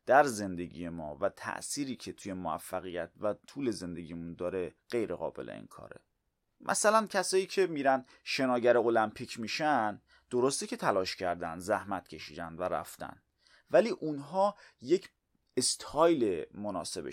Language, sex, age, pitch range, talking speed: Persian, male, 30-49, 95-150 Hz, 125 wpm